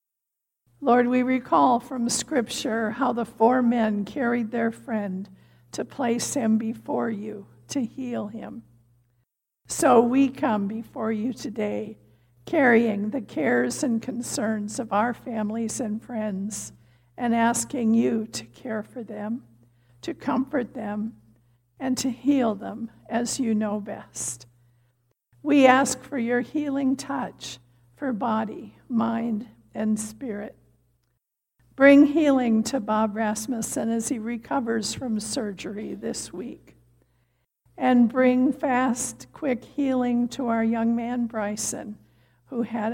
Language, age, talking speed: English, 60-79, 125 wpm